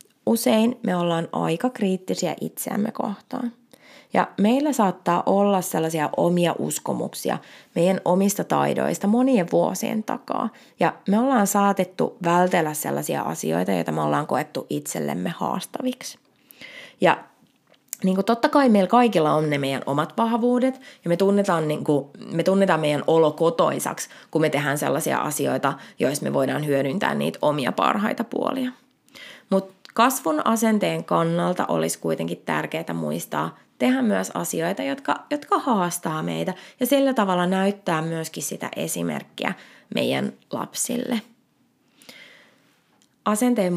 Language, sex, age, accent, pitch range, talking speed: Finnish, female, 20-39, native, 170-245 Hz, 125 wpm